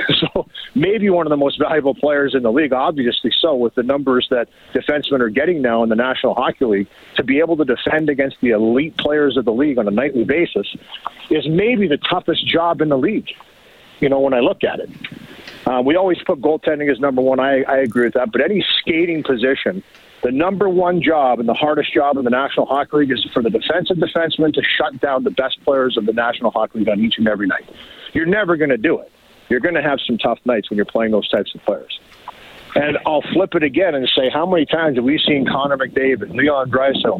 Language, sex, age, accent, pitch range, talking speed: English, male, 50-69, American, 125-155 Hz, 235 wpm